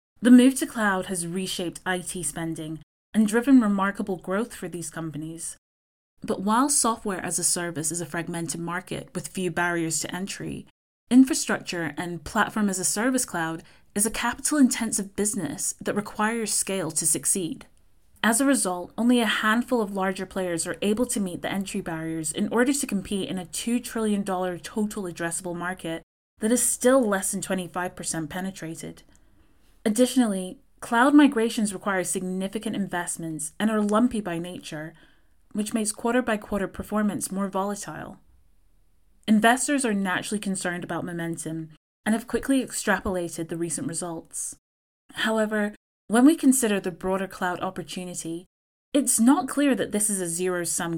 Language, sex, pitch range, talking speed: English, female, 170-220 Hz, 150 wpm